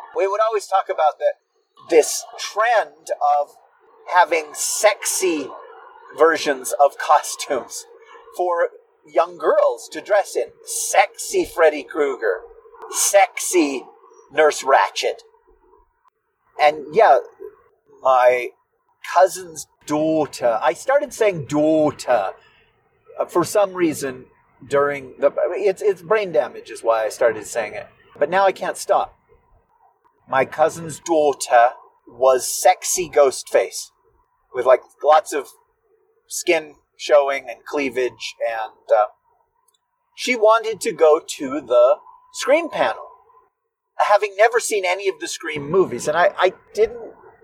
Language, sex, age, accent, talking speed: English, male, 40-59, American, 120 wpm